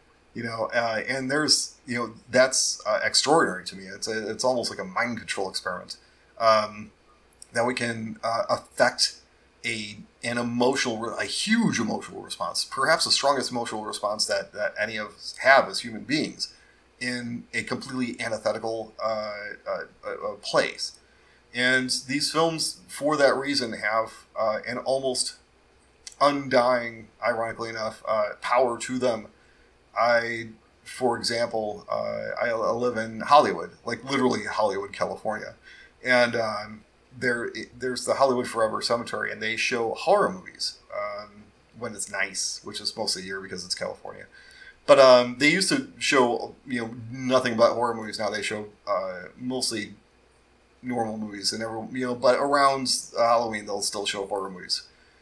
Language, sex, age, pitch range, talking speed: English, male, 30-49, 110-130 Hz, 150 wpm